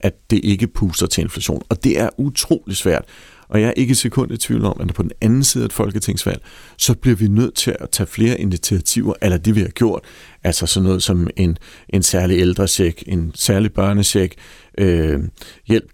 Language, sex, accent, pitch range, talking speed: Danish, male, native, 90-110 Hz, 205 wpm